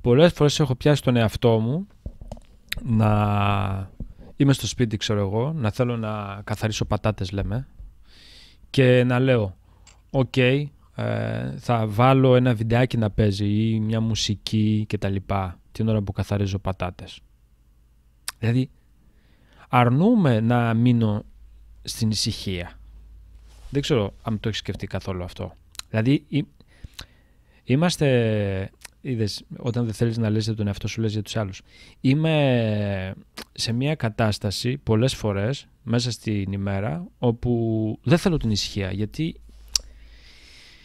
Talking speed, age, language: 120 wpm, 20-39, Greek